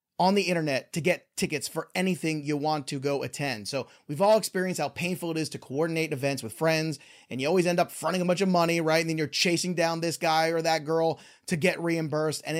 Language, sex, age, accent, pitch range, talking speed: English, male, 30-49, American, 160-205 Hz, 245 wpm